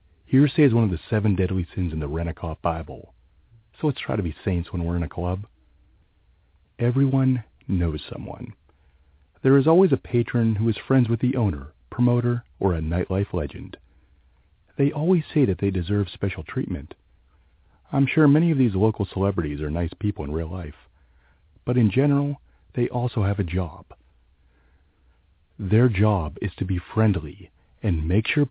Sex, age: male, 40-59